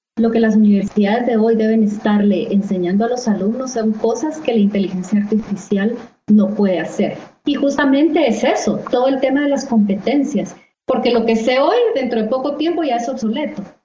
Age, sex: 30-49, female